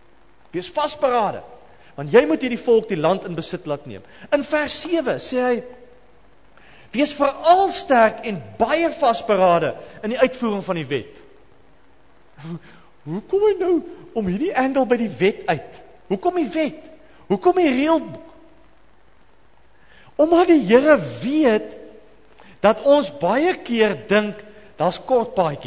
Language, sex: English, male